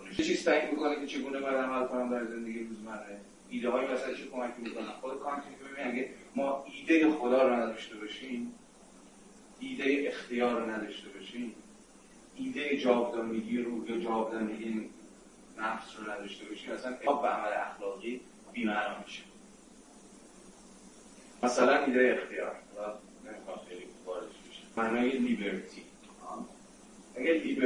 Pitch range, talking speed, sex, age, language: 110-135 Hz, 110 wpm, male, 40-59, Persian